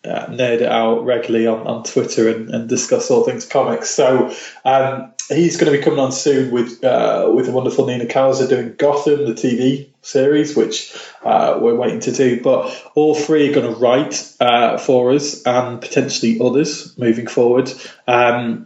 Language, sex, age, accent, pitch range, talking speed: English, male, 20-39, British, 120-145 Hz, 185 wpm